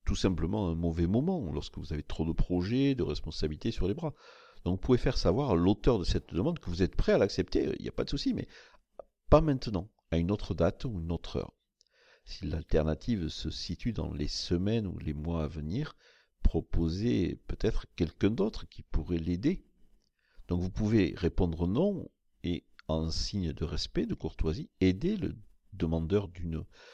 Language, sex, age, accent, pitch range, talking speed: French, male, 50-69, French, 80-100 Hz, 185 wpm